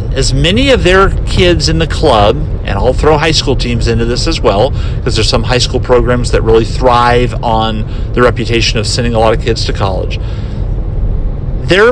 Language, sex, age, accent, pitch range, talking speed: English, male, 50-69, American, 110-130 Hz, 195 wpm